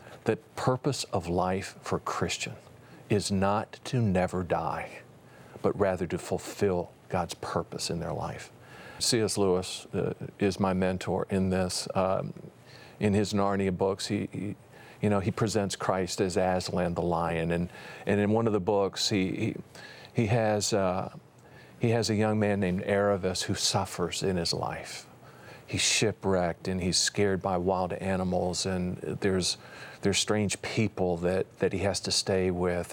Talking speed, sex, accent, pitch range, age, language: 160 wpm, male, American, 90-110 Hz, 50-69, English